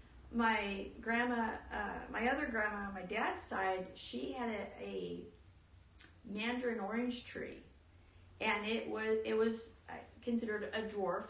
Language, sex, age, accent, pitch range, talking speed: English, female, 40-59, American, 170-215 Hz, 135 wpm